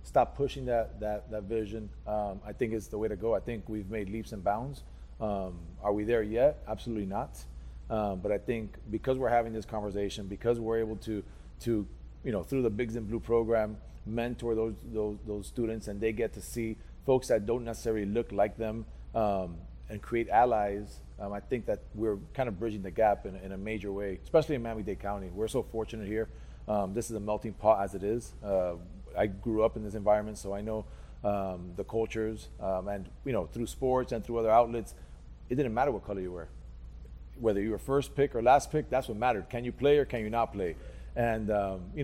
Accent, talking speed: American, 220 wpm